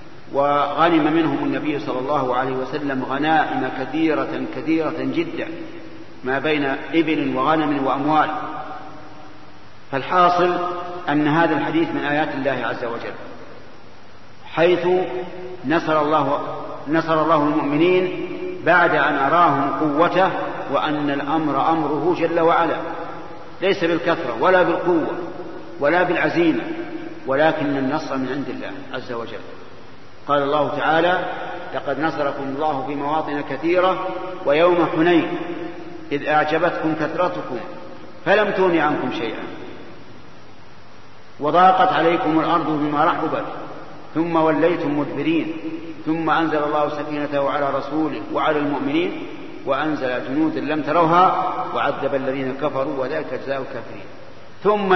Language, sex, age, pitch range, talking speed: Arabic, male, 50-69, 145-180 Hz, 110 wpm